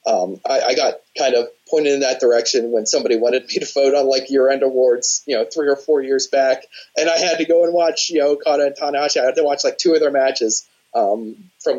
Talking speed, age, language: 260 wpm, 30-49, English